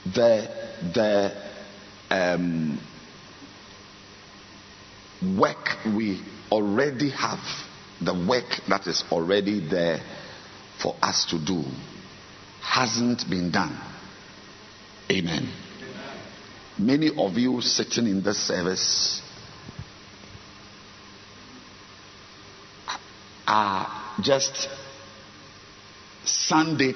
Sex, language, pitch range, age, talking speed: male, English, 95-110 Hz, 50-69, 70 wpm